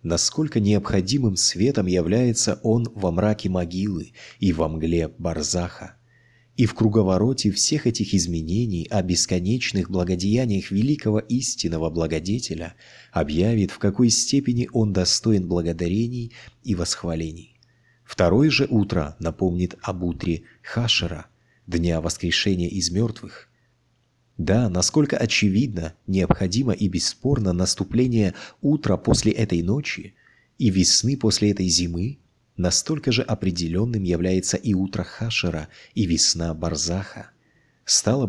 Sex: male